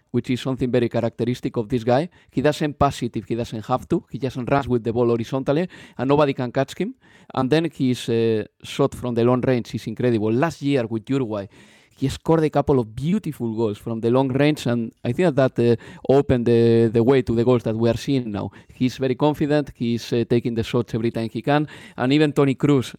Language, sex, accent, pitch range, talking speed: English, male, Spanish, 115-140 Hz, 230 wpm